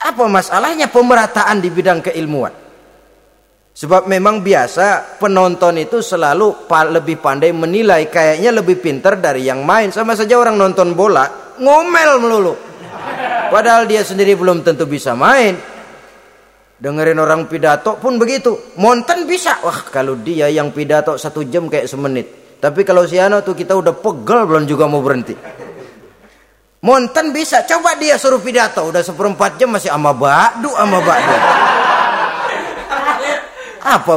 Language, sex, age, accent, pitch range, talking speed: Indonesian, male, 30-49, native, 170-240 Hz, 135 wpm